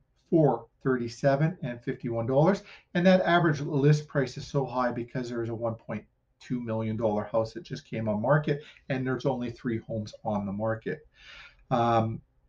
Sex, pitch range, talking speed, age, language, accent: male, 120-150 Hz, 170 wpm, 40-59, English, American